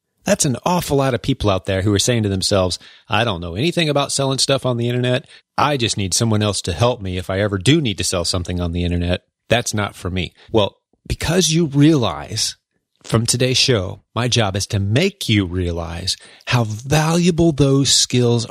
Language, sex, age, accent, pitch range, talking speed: English, male, 30-49, American, 100-140 Hz, 210 wpm